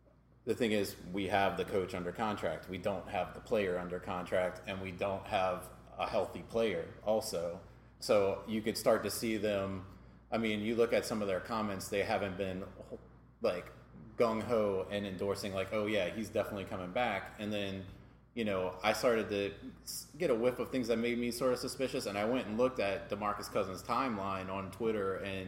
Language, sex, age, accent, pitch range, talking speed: English, male, 30-49, American, 95-110 Hz, 200 wpm